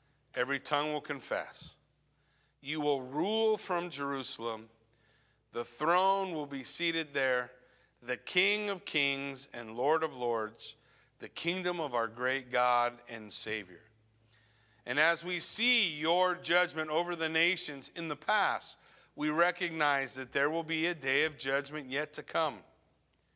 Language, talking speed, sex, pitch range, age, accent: English, 145 wpm, male, 125-175 Hz, 50-69, American